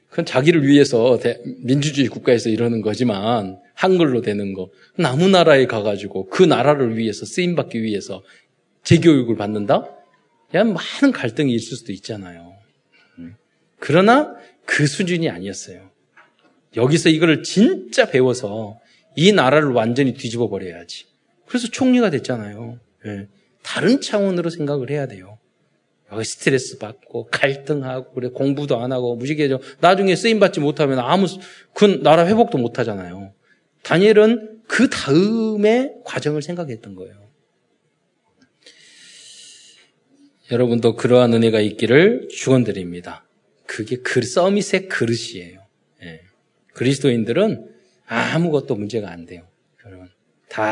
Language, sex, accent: Korean, male, native